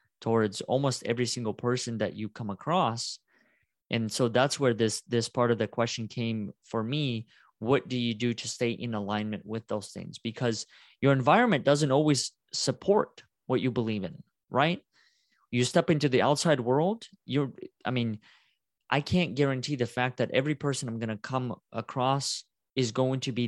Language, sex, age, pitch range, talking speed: English, male, 20-39, 110-135 Hz, 180 wpm